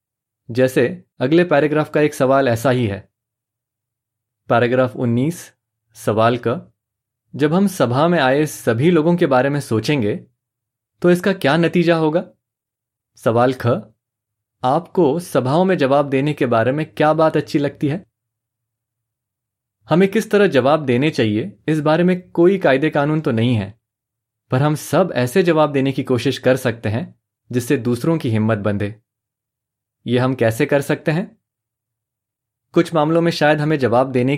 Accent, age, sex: native, 20-39, male